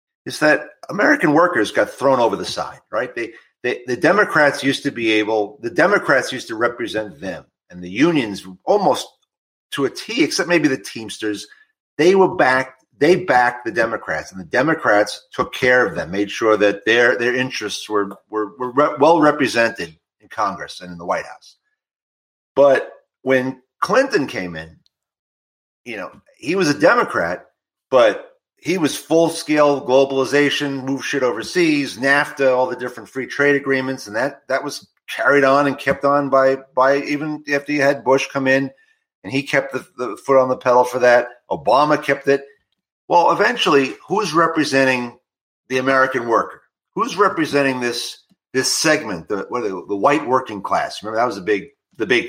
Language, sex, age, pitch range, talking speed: English, male, 40-59, 120-150 Hz, 175 wpm